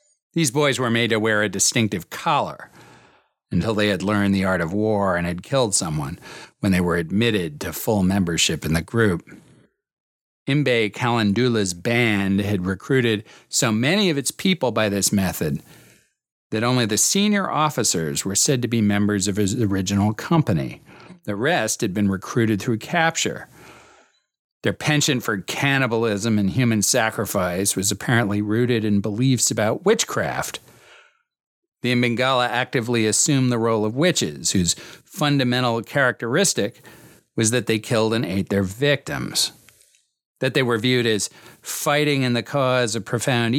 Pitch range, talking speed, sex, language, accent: 100-130 Hz, 150 wpm, male, English, American